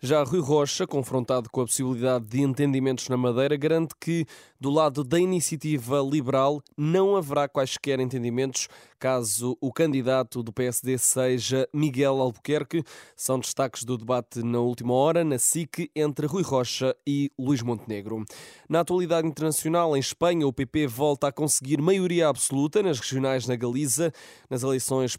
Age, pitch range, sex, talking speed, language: 20-39, 130-155 Hz, male, 150 wpm, Portuguese